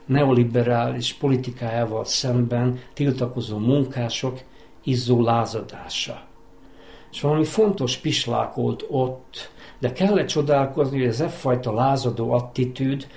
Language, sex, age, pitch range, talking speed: Hungarian, male, 50-69, 120-150 Hz, 90 wpm